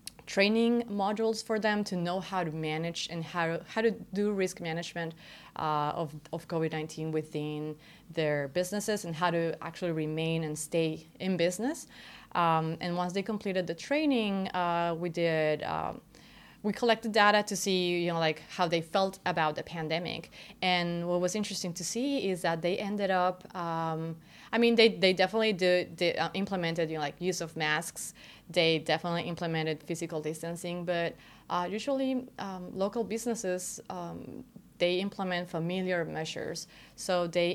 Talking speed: 155 wpm